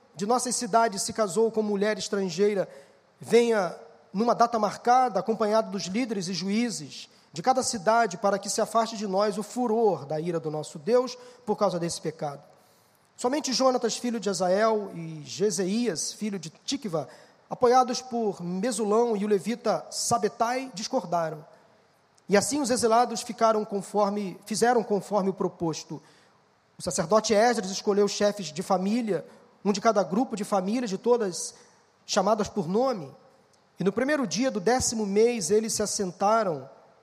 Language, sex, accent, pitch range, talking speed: Portuguese, male, Brazilian, 195-235 Hz, 150 wpm